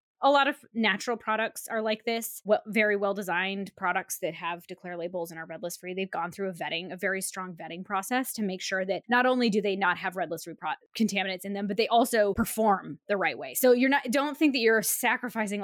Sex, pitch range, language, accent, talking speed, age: female, 195-245 Hz, English, American, 240 wpm, 20-39